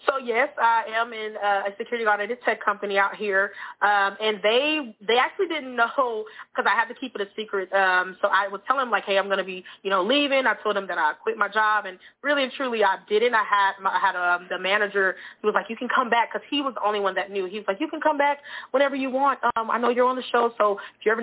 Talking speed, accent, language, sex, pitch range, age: 285 wpm, American, English, female, 195-255 Hz, 20-39